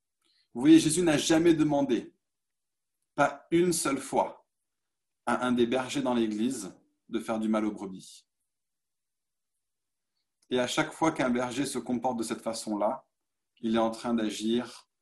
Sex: male